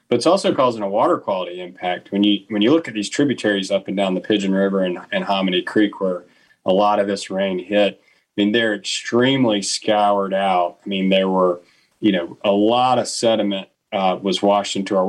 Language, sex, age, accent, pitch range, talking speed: English, male, 40-59, American, 100-115 Hz, 215 wpm